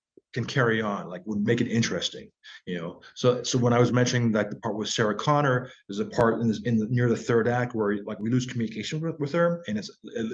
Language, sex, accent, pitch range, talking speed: English, male, American, 110-145 Hz, 255 wpm